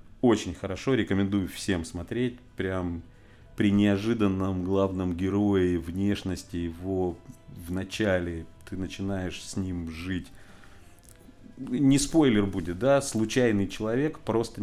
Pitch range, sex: 95-115 Hz, male